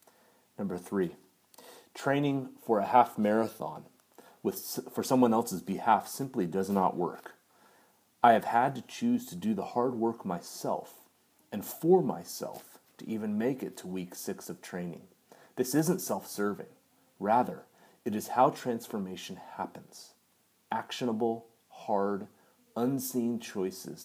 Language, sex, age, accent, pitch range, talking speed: English, male, 30-49, American, 95-135 Hz, 125 wpm